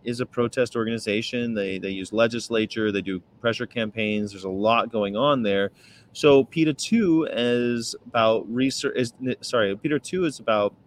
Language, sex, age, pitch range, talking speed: English, male, 30-49, 110-140 Hz, 165 wpm